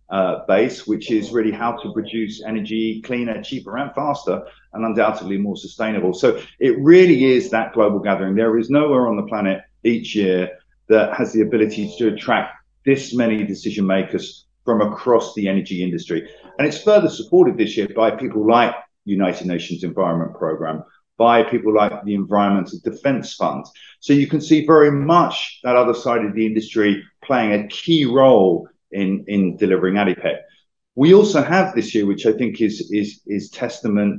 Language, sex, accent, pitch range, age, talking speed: English, male, British, 100-125 Hz, 50-69, 175 wpm